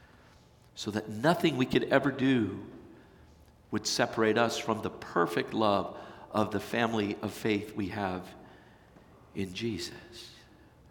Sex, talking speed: male, 125 wpm